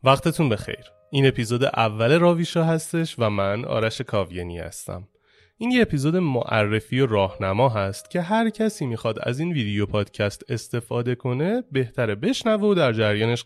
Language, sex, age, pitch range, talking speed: Persian, male, 30-49, 110-165 Hz, 150 wpm